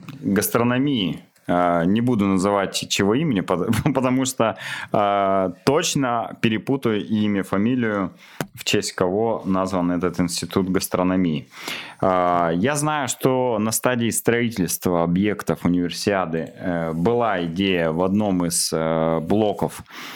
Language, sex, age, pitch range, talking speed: Russian, male, 20-39, 90-110 Hz, 100 wpm